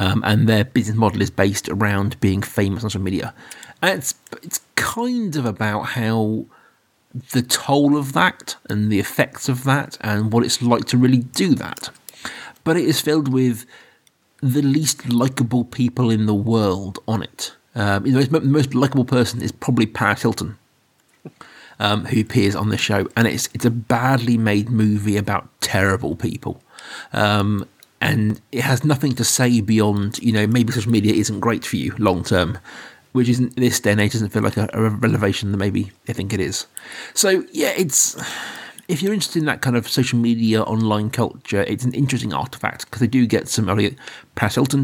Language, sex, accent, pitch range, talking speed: English, male, British, 105-125 Hz, 190 wpm